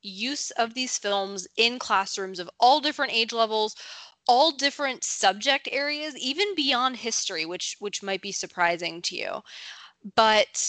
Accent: American